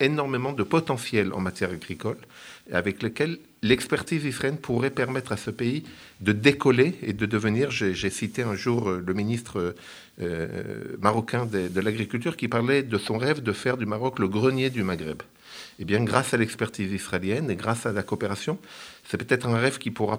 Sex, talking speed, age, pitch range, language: male, 180 wpm, 50-69, 100-125 Hz, French